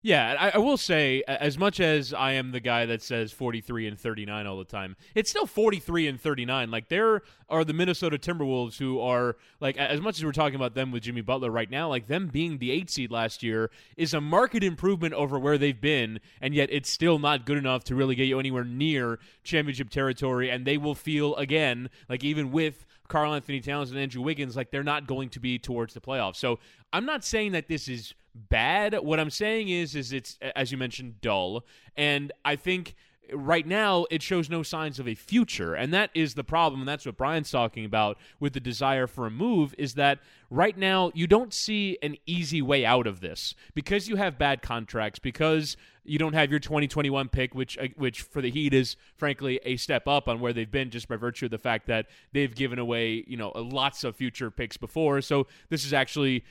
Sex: male